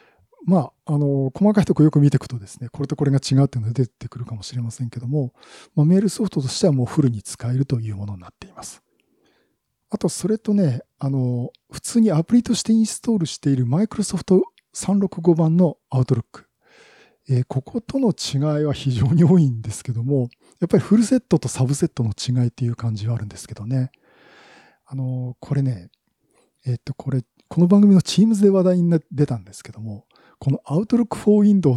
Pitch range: 125-190 Hz